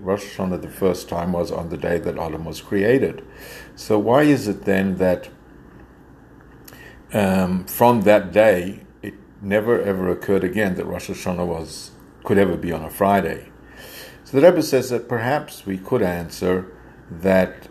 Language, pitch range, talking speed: English, 90-105 Hz, 165 wpm